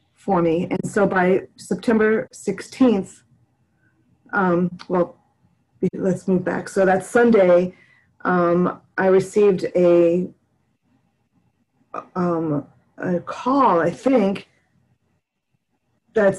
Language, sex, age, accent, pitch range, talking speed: English, female, 40-59, American, 175-205 Hz, 90 wpm